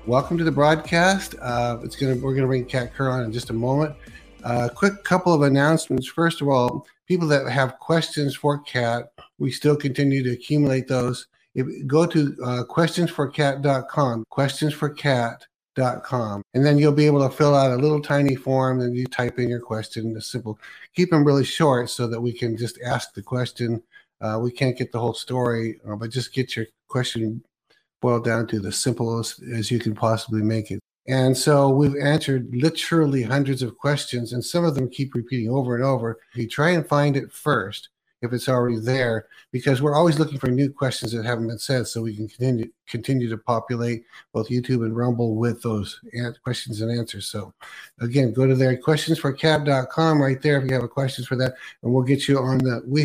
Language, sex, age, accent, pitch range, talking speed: English, male, 50-69, American, 120-145 Hz, 200 wpm